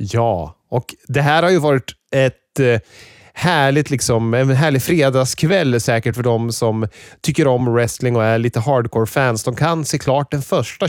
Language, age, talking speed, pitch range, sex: Swedish, 30-49, 165 wpm, 115-145 Hz, male